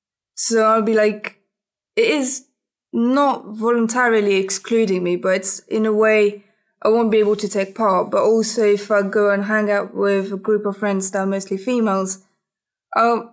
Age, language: 20-39, English